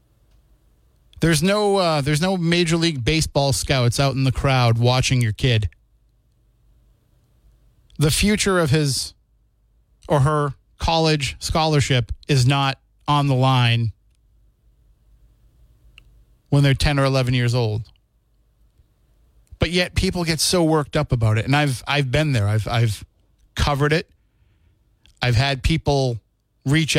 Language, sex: English, male